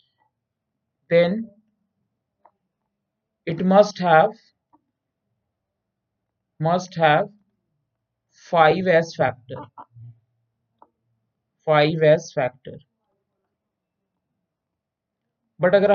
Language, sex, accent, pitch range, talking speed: Hindi, male, native, 155-205 Hz, 40 wpm